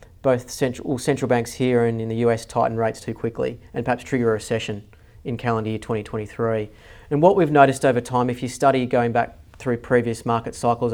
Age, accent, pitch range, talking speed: 40-59, Australian, 115-135 Hz, 210 wpm